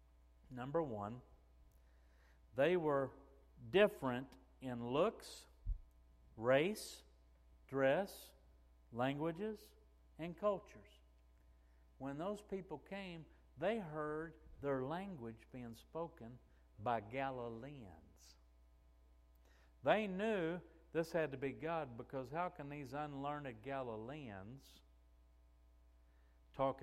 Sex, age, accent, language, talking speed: male, 60-79, American, English, 85 wpm